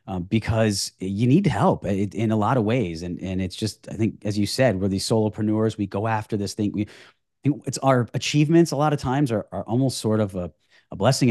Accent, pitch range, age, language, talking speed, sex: American, 100-130 Hz, 30-49, English, 235 wpm, male